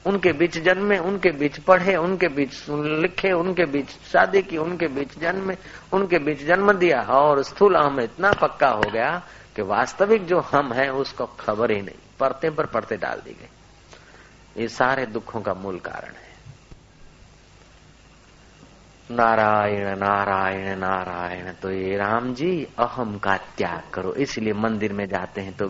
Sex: male